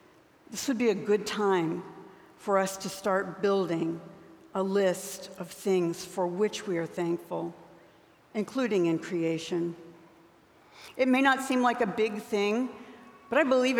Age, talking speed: 60-79, 150 wpm